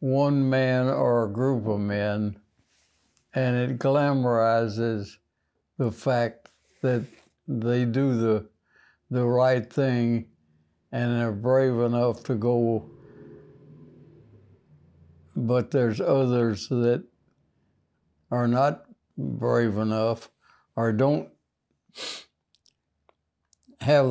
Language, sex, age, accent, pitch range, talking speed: English, male, 60-79, American, 80-130 Hz, 90 wpm